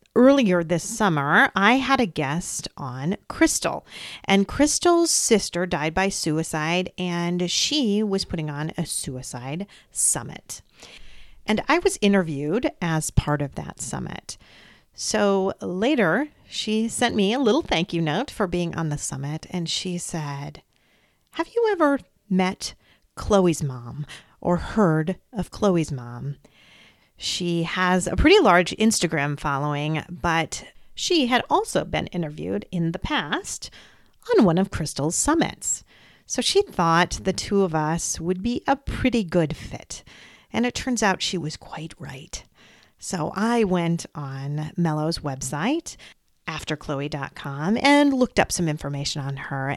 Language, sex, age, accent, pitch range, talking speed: English, female, 40-59, American, 155-210 Hz, 140 wpm